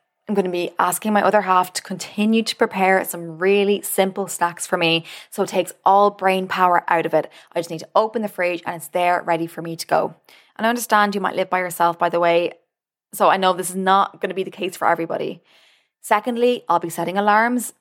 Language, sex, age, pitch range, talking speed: English, female, 20-39, 175-215 Hz, 240 wpm